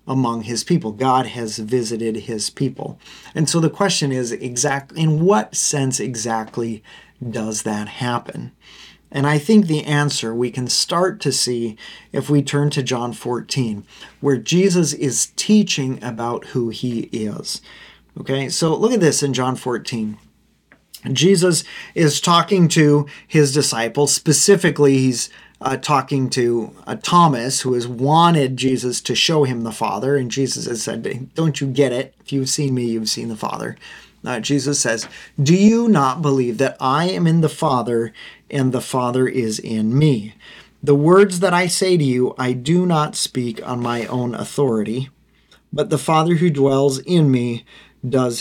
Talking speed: 165 wpm